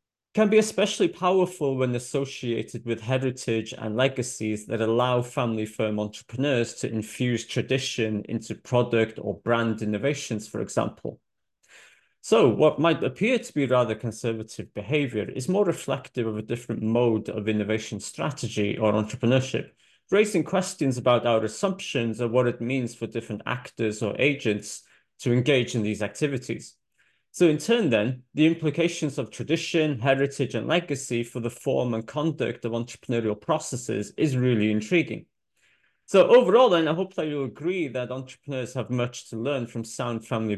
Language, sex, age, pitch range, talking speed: English, male, 30-49, 115-140 Hz, 155 wpm